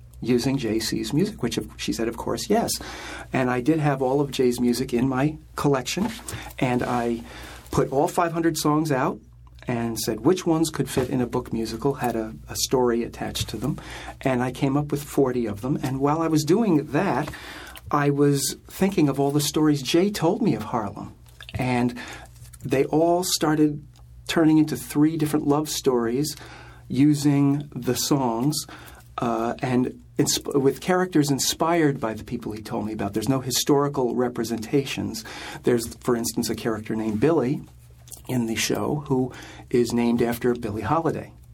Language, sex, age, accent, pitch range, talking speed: English, male, 40-59, American, 115-145 Hz, 170 wpm